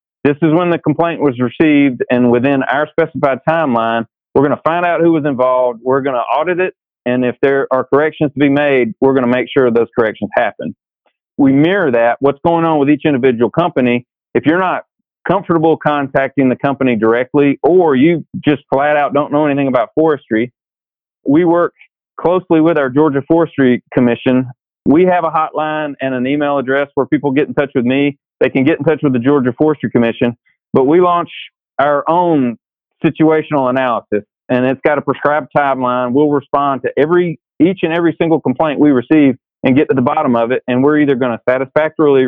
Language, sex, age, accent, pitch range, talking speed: English, male, 40-59, American, 125-155 Hz, 195 wpm